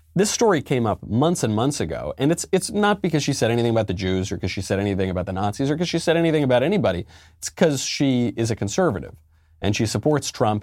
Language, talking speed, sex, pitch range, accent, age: English, 250 wpm, male, 90-135 Hz, American, 30-49